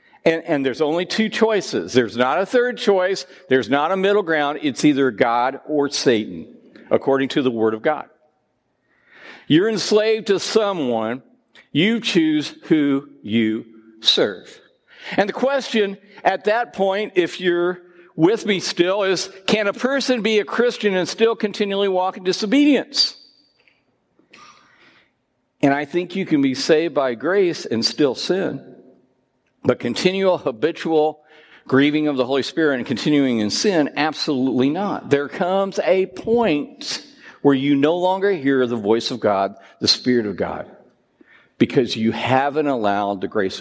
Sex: male